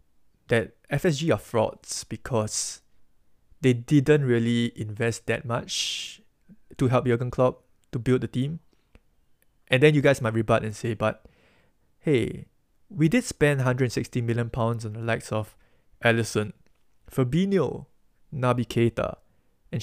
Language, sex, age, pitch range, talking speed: English, male, 20-39, 115-130 Hz, 130 wpm